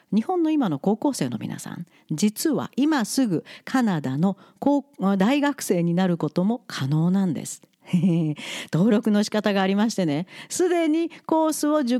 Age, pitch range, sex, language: 50-69, 170-255 Hz, female, Japanese